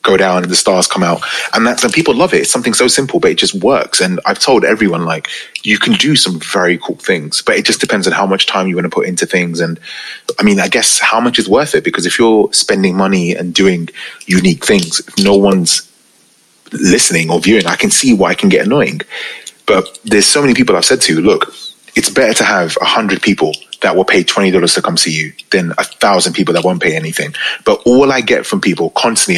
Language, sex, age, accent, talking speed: English, male, 30-49, British, 245 wpm